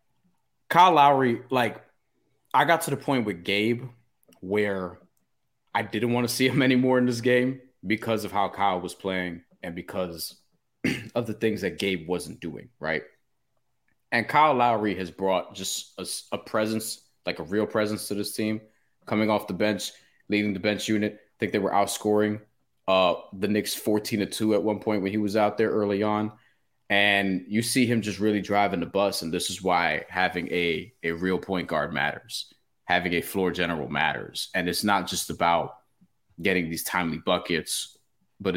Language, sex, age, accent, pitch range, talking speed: English, male, 20-39, American, 95-115 Hz, 180 wpm